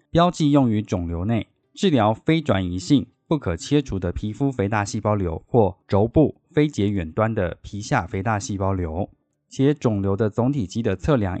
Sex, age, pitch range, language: male, 20-39, 100-135 Hz, Chinese